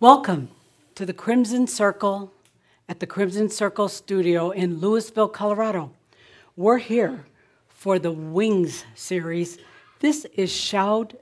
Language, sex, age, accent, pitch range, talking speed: English, female, 60-79, American, 175-230 Hz, 120 wpm